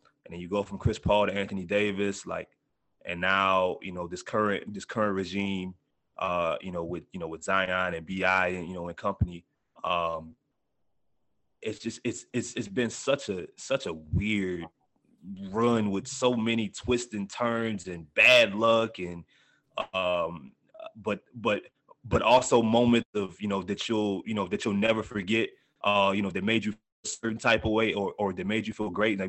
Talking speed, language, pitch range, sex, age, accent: 190 wpm, English, 95-115 Hz, male, 30-49, American